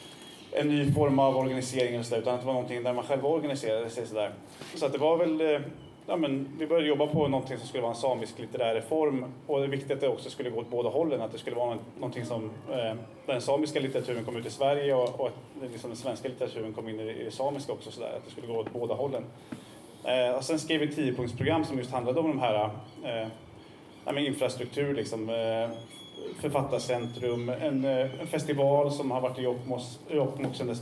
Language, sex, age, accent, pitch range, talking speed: Swedish, male, 20-39, Norwegian, 120-145 Hz, 220 wpm